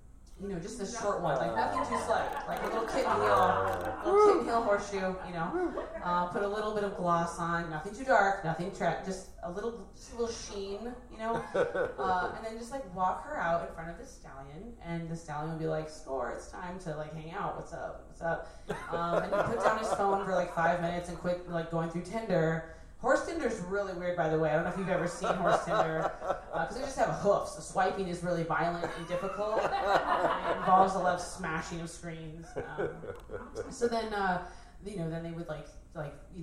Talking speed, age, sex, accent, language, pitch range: 225 wpm, 30-49, female, American, English, 165-195 Hz